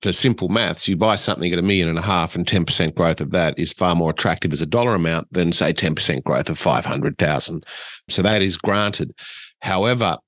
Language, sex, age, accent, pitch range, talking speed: English, male, 40-59, Australian, 85-100 Hz, 210 wpm